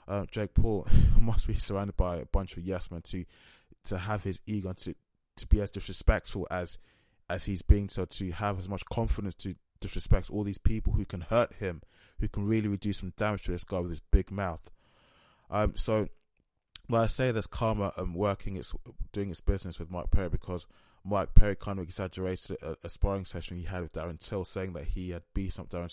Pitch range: 90-105 Hz